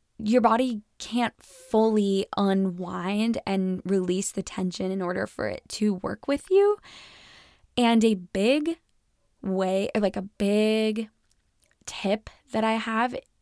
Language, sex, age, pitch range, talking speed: English, female, 10-29, 190-225 Hz, 125 wpm